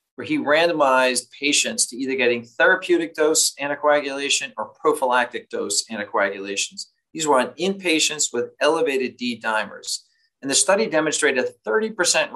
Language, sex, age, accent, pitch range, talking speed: English, male, 40-59, American, 120-190 Hz, 130 wpm